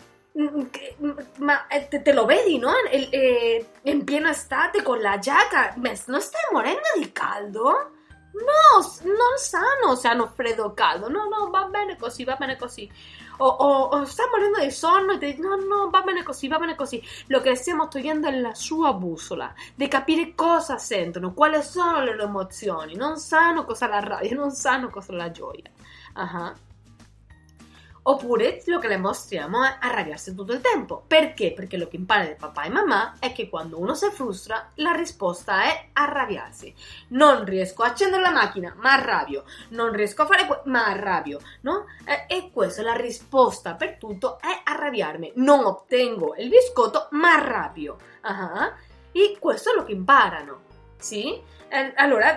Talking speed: 165 wpm